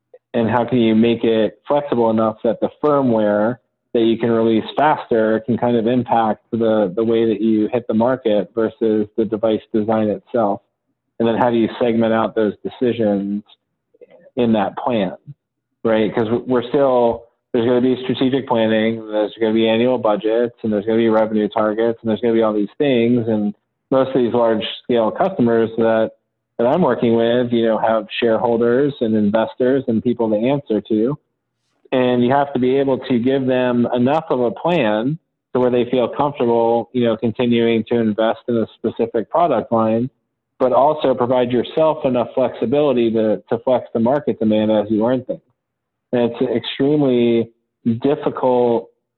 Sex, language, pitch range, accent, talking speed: male, English, 110-125 Hz, American, 180 wpm